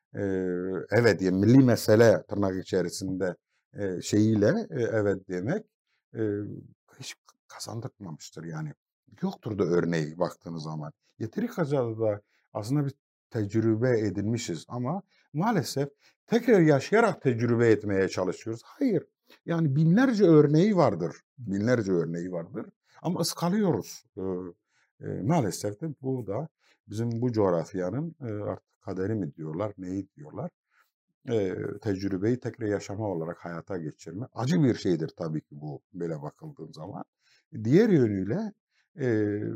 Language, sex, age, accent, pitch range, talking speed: Turkish, male, 50-69, native, 100-130 Hz, 125 wpm